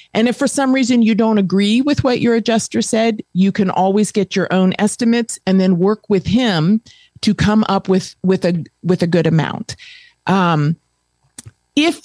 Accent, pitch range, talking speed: American, 170-225 Hz, 185 wpm